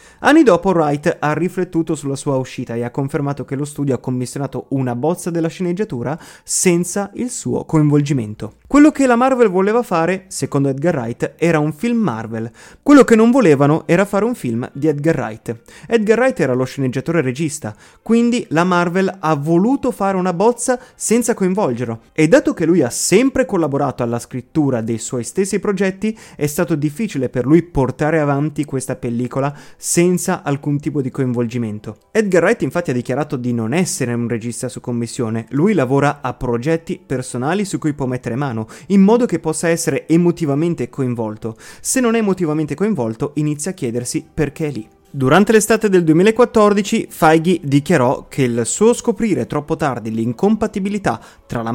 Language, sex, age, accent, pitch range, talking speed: Italian, male, 30-49, native, 130-190 Hz, 170 wpm